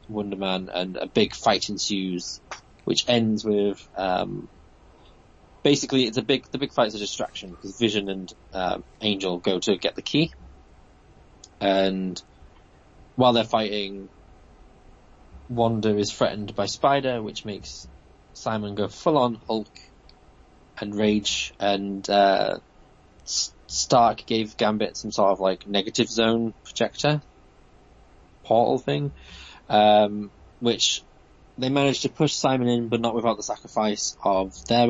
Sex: male